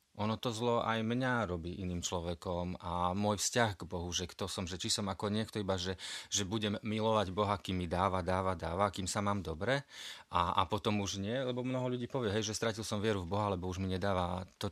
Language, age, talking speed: Slovak, 30-49, 230 wpm